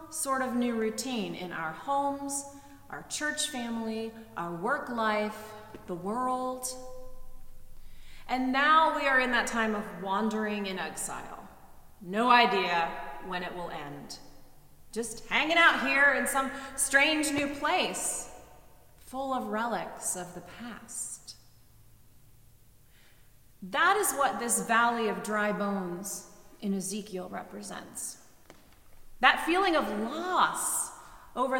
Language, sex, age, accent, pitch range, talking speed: English, female, 30-49, American, 185-255 Hz, 120 wpm